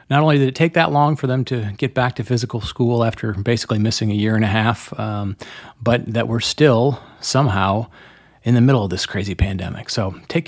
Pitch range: 110-150 Hz